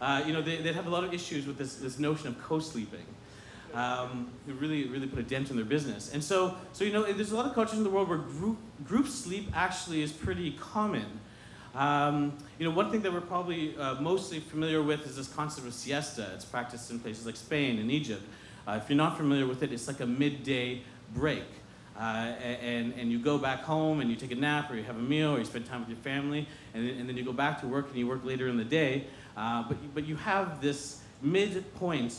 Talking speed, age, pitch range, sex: 240 wpm, 40-59, 120-155 Hz, male